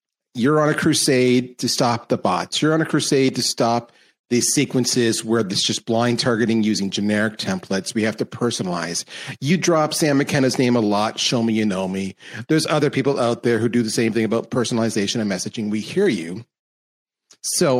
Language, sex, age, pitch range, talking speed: English, male, 40-59, 120-175 Hz, 195 wpm